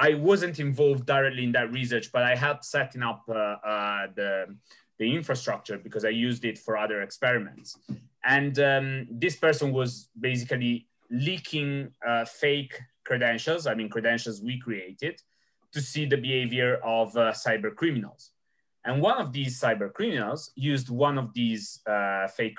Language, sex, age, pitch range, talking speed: English, male, 30-49, 115-145 Hz, 155 wpm